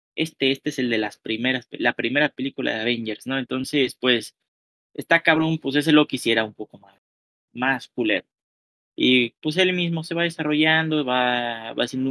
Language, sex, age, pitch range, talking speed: Spanish, male, 30-49, 110-140 Hz, 185 wpm